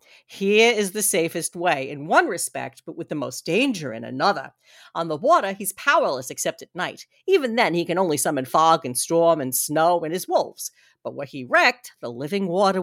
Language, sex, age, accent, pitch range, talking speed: English, female, 50-69, American, 150-215 Hz, 205 wpm